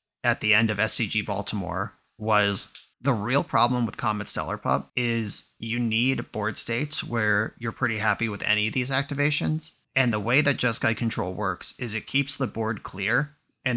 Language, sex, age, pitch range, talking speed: English, male, 30-49, 105-125 Hz, 185 wpm